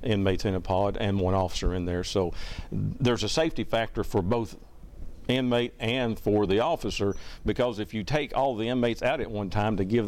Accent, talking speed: American, 200 wpm